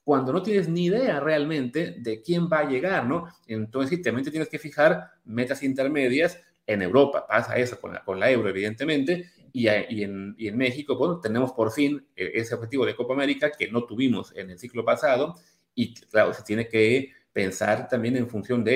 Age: 30-49